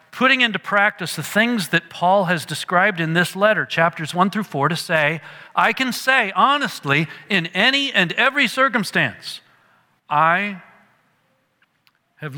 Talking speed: 140 wpm